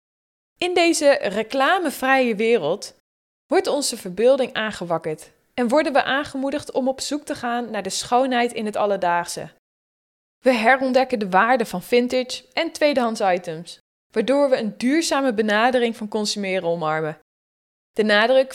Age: 20-39